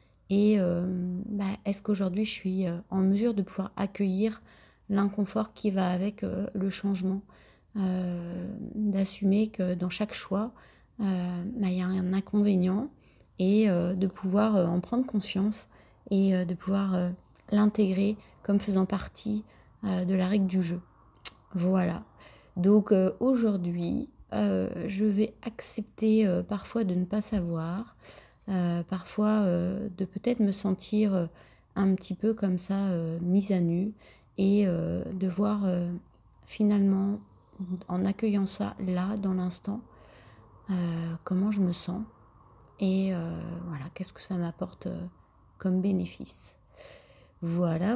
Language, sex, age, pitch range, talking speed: French, female, 30-49, 180-205 Hz, 135 wpm